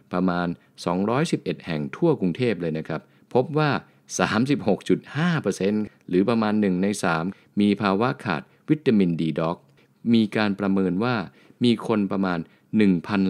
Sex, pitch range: male, 80-105 Hz